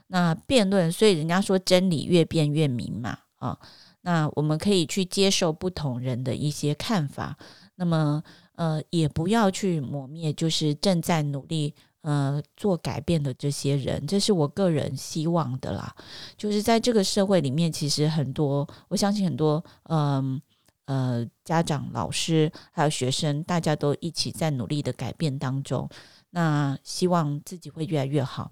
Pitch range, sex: 140-175 Hz, female